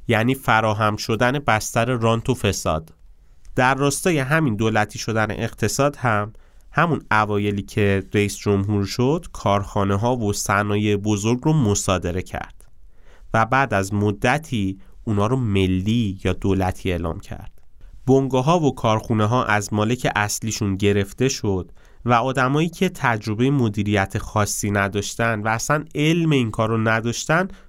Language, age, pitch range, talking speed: Persian, 30-49, 95-120 Hz, 135 wpm